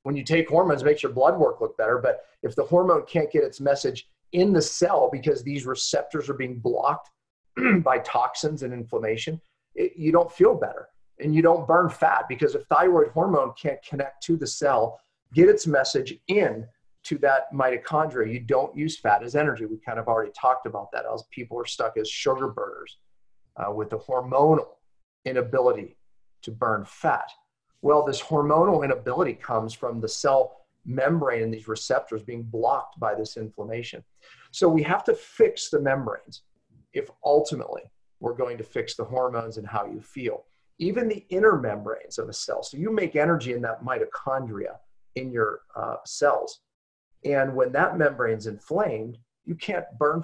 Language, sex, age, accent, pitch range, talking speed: English, male, 40-59, American, 120-185 Hz, 175 wpm